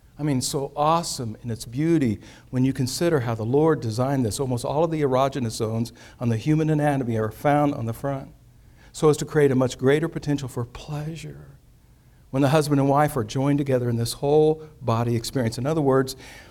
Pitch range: 120-155 Hz